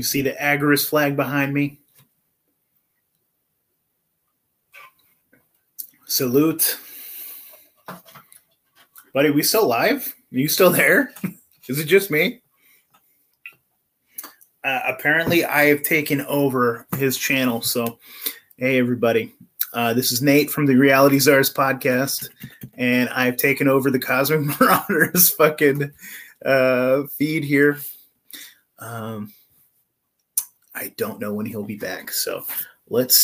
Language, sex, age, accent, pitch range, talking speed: English, male, 30-49, American, 125-150 Hz, 110 wpm